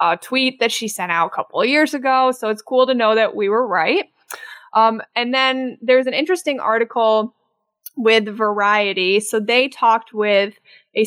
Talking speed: 185 wpm